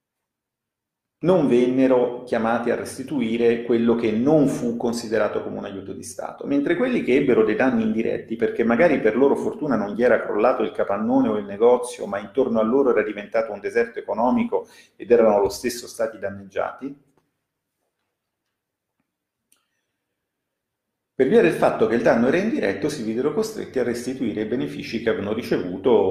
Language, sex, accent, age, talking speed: Italian, male, native, 40-59, 160 wpm